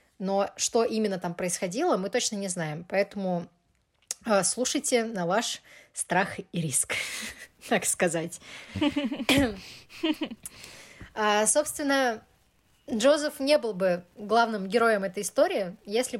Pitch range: 185-240 Hz